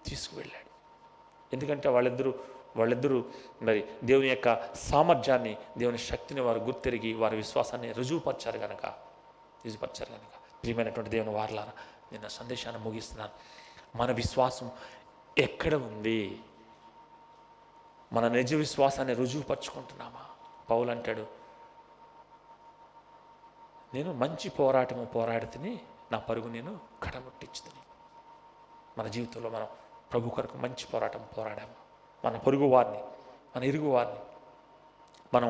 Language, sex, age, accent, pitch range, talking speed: Telugu, male, 30-49, native, 115-145 Hz, 95 wpm